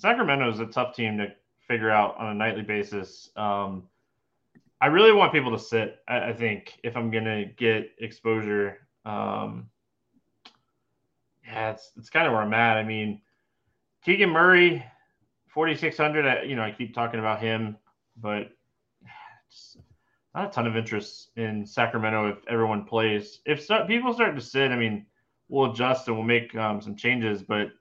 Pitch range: 110-140 Hz